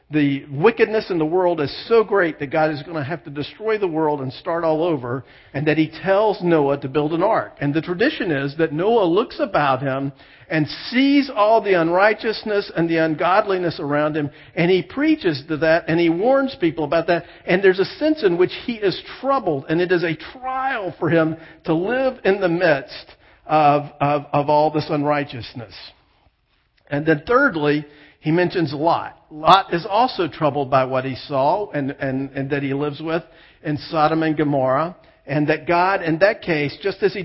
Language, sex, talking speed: English, male, 195 wpm